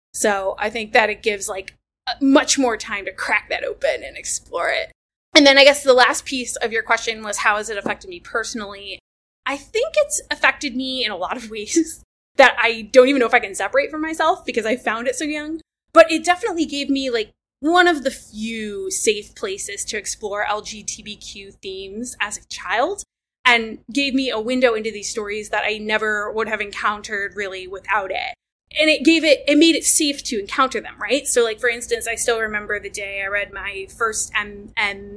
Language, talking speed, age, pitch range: English, 210 wpm, 20-39, 210-290 Hz